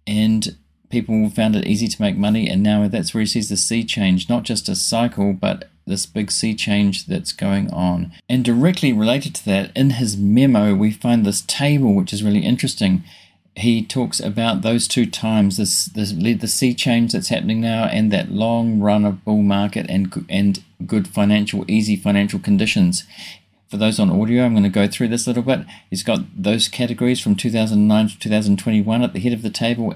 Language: English